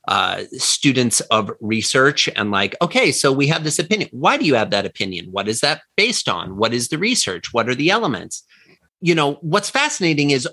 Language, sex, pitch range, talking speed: English, male, 125-185 Hz, 205 wpm